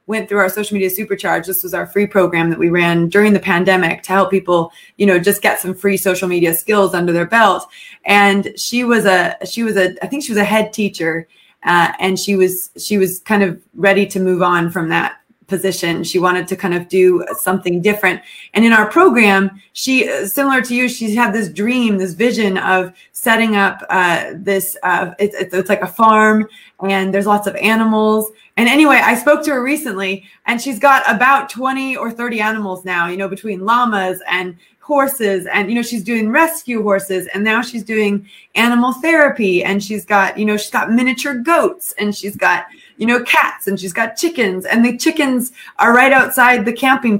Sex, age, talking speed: female, 20-39, 205 wpm